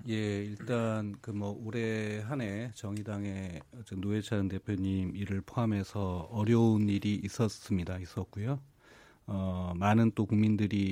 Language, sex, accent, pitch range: Korean, male, native, 100-115 Hz